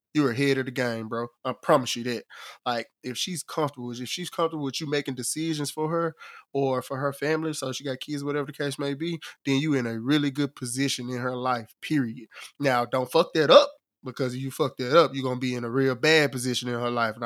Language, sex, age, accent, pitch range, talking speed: English, male, 20-39, American, 125-145 Hz, 240 wpm